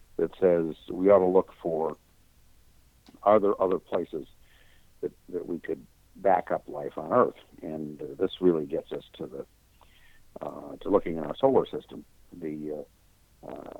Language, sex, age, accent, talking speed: English, male, 60-79, American, 165 wpm